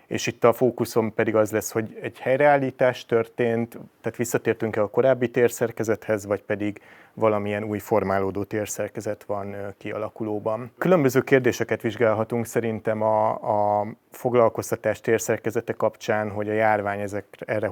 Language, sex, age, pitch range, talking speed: Hungarian, male, 30-49, 105-125 Hz, 130 wpm